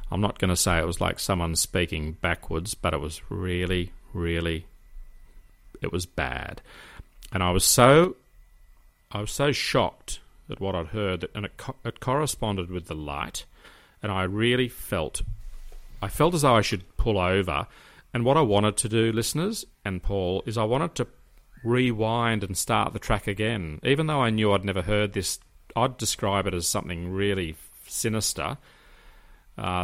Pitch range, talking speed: 85-115 Hz, 175 wpm